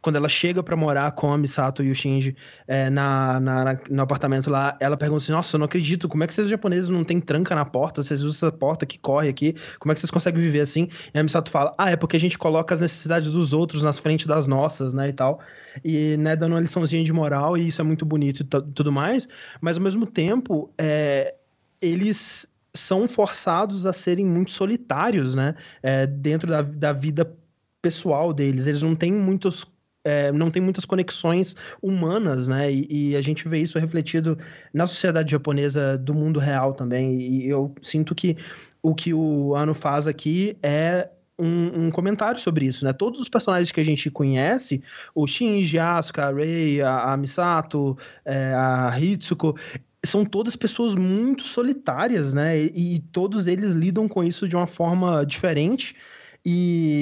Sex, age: male, 20-39